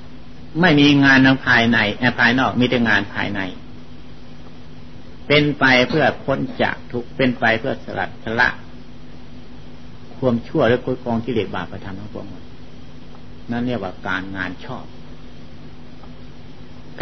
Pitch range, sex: 95-140 Hz, male